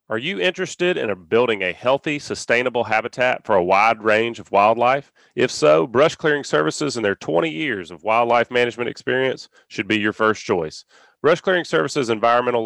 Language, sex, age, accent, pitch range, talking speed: English, male, 30-49, American, 115-145 Hz, 175 wpm